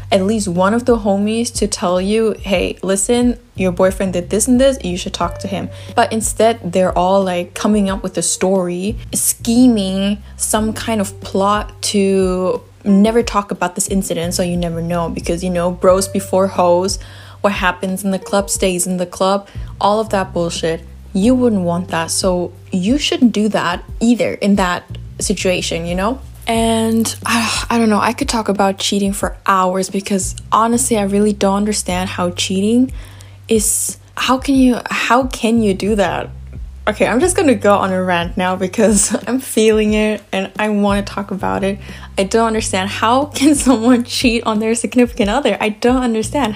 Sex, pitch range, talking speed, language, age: female, 180-225 Hz, 185 wpm, English, 10-29